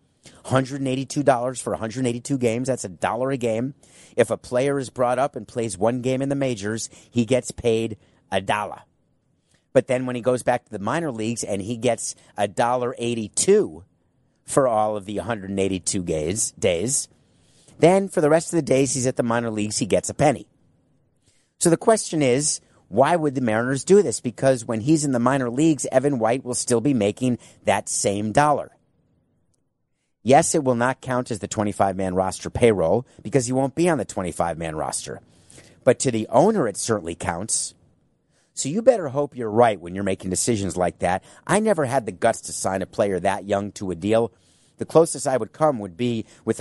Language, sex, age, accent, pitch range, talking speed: English, male, 30-49, American, 105-135 Hz, 195 wpm